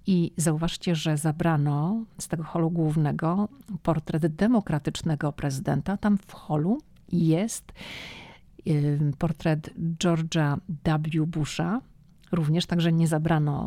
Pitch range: 155-185 Hz